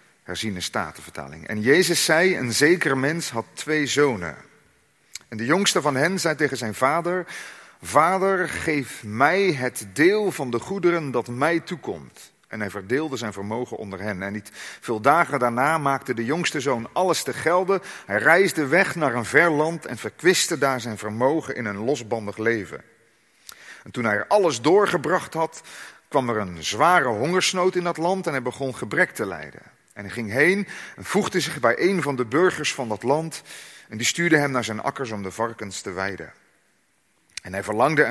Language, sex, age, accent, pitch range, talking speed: Dutch, male, 40-59, Dutch, 115-170 Hz, 185 wpm